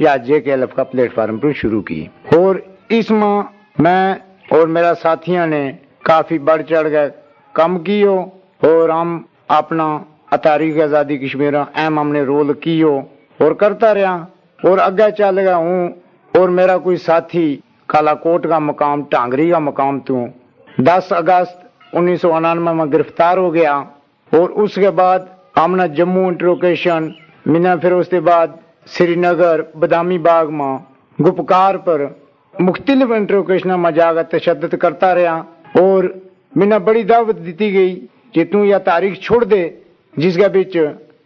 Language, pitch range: Urdu, 160-190 Hz